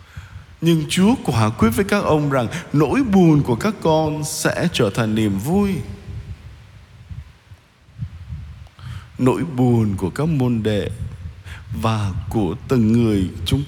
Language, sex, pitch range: Vietnamese, male, 105-155 Hz